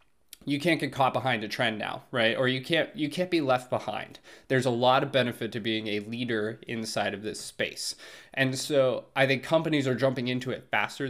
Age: 20-39